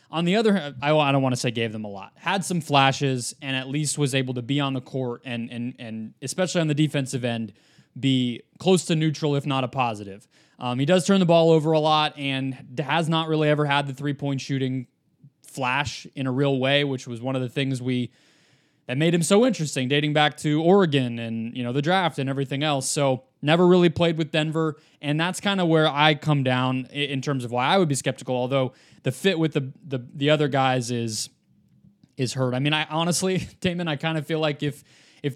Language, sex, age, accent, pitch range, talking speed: English, male, 20-39, American, 130-155 Hz, 230 wpm